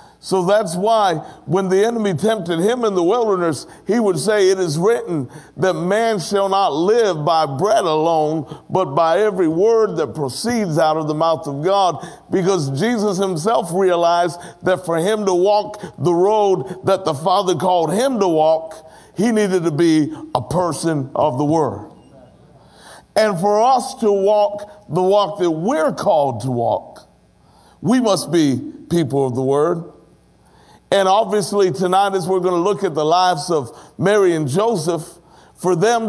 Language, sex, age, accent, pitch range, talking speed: English, male, 50-69, American, 160-210 Hz, 165 wpm